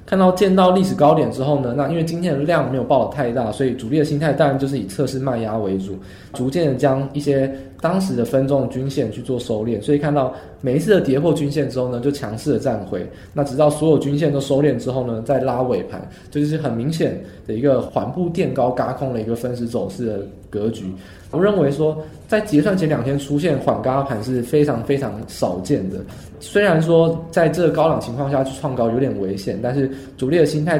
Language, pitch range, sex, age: Chinese, 120-150 Hz, male, 20-39